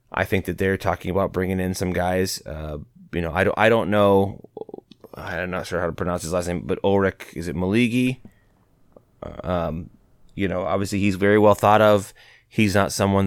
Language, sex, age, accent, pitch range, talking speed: English, male, 30-49, American, 90-105 Hz, 200 wpm